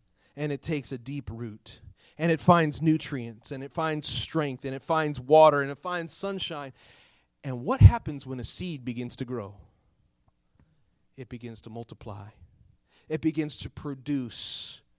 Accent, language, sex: American, English, male